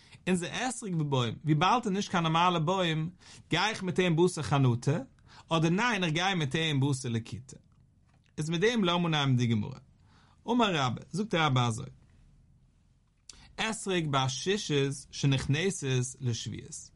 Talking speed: 85 wpm